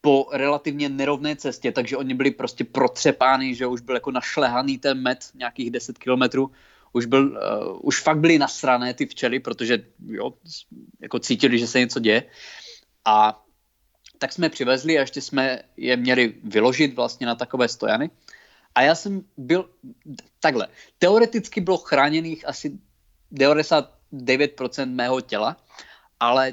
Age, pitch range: 20-39, 130-160 Hz